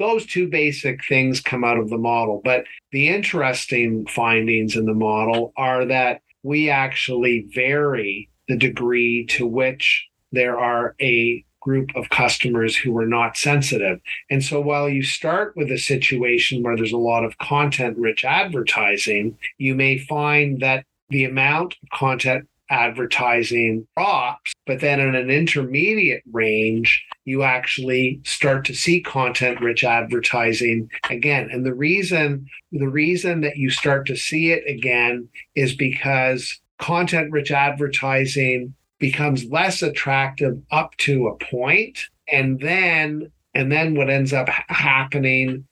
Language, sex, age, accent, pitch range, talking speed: English, male, 50-69, American, 125-145 Hz, 140 wpm